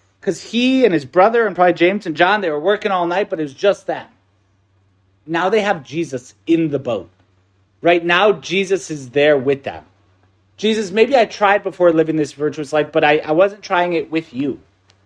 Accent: American